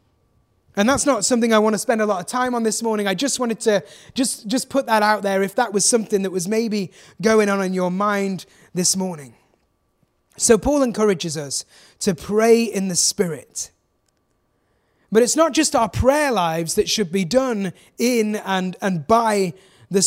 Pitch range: 195-245 Hz